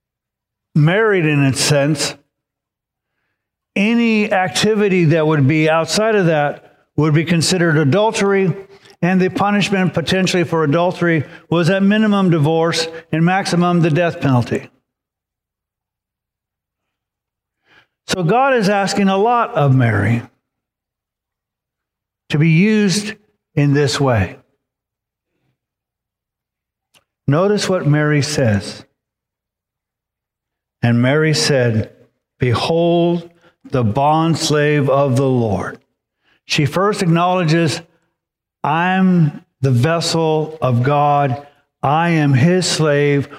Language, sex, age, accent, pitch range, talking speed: English, male, 50-69, American, 120-170 Hz, 100 wpm